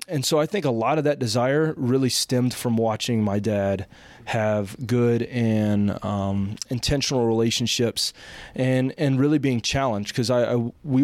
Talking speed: 165 wpm